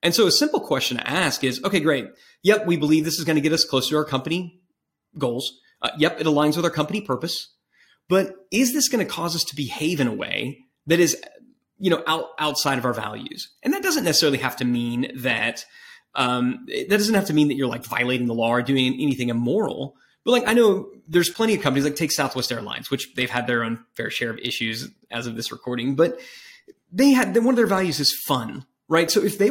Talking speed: 230 wpm